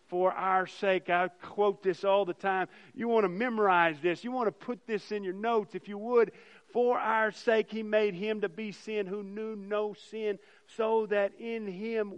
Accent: American